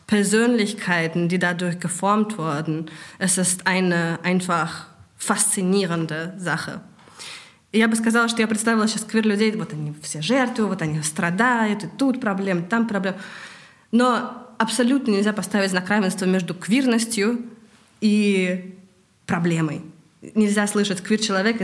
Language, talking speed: German, 130 wpm